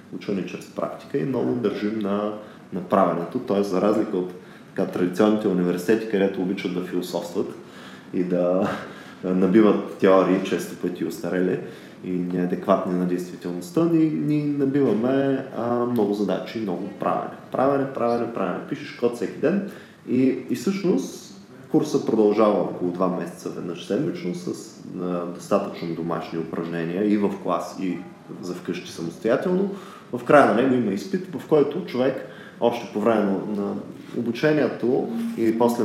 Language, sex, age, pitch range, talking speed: Bulgarian, male, 20-39, 90-120 Hz, 145 wpm